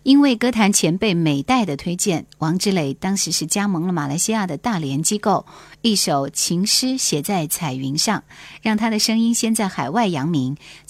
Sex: female